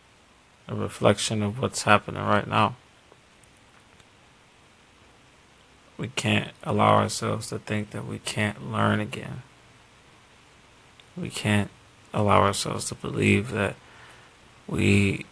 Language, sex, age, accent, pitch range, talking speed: English, male, 20-39, American, 105-115 Hz, 100 wpm